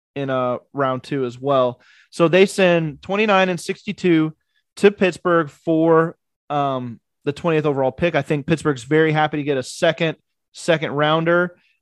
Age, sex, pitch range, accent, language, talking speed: 20-39, male, 140-170 Hz, American, English, 155 wpm